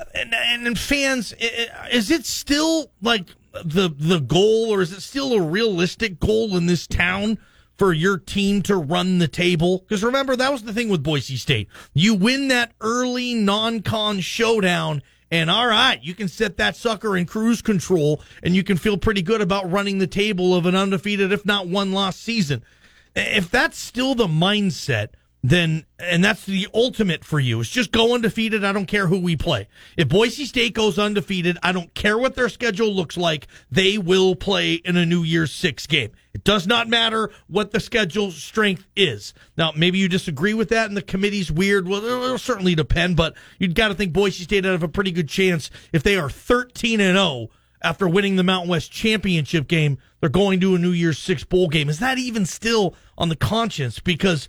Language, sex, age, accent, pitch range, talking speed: English, male, 30-49, American, 175-220 Hz, 200 wpm